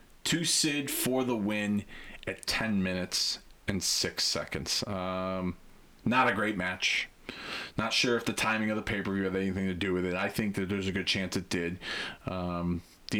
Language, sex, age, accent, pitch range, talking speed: English, male, 30-49, American, 95-110 Hz, 185 wpm